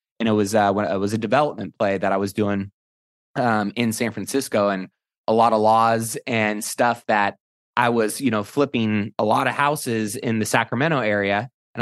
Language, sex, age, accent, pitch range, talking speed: English, male, 20-39, American, 105-125 Hz, 205 wpm